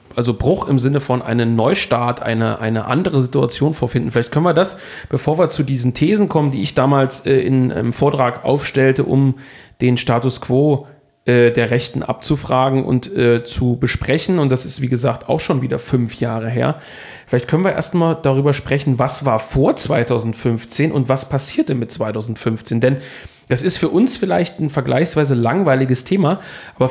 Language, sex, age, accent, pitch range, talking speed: German, male, 40-59, German, 120-150 Hz, 175 wpm